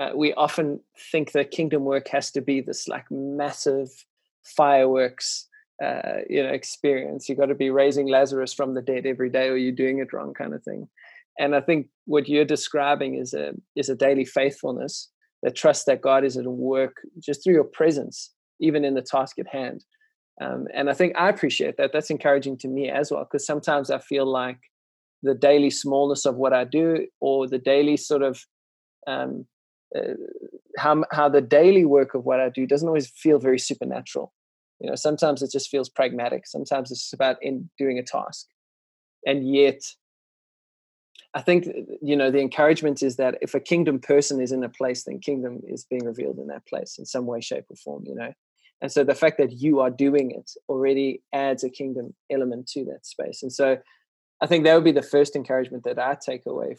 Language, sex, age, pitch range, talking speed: English, male, 20-39, 130-150 Hz, 205 wpm